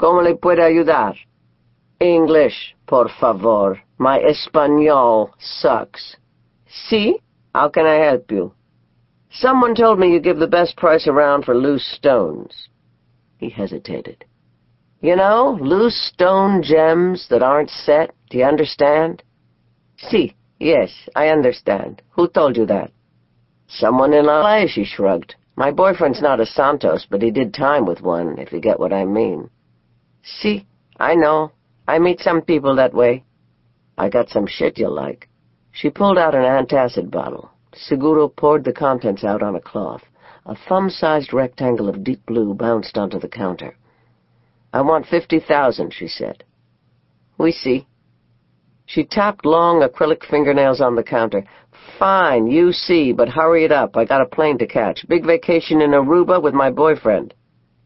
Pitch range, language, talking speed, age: 115-165 Hz, English, 150 wpm, 50-69